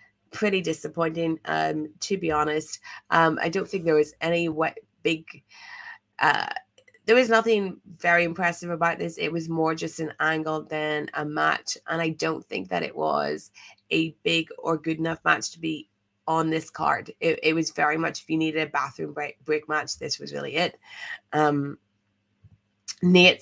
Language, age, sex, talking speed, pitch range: English, 20-39, female, 175 wpm, 155-195 Hz